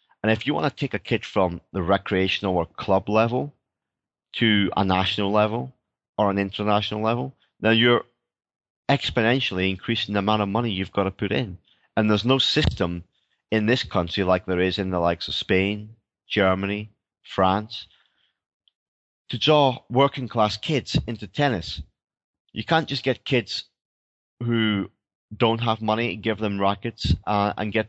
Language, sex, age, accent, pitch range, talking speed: English, male, 30-49, British, 95-115 Hz, 155 wpm